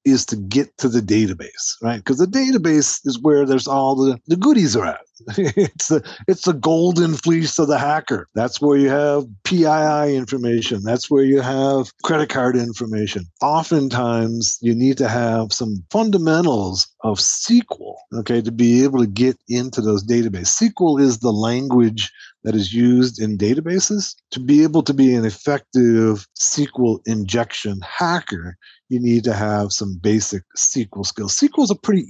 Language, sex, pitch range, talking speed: English, male, 110-145 Hz, 165 wpm